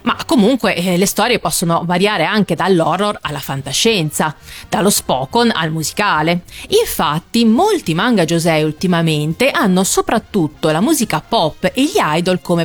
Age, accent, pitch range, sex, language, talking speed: 30-49, native, 155-220 Hz, female, Italian, 135 wpm